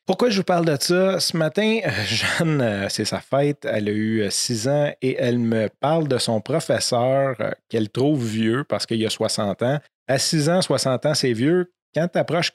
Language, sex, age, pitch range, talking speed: French, male, 30-49, 110-140 Hz, 210 wpm